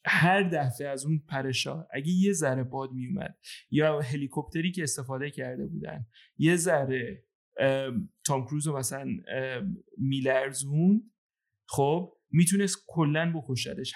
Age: 30-49